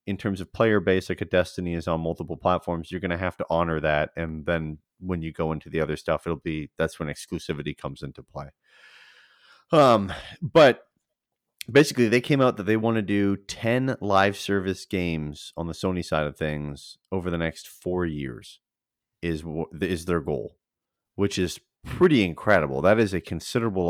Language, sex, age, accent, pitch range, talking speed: English, male, 30-49, American, 80-105 Hz, 185 wpm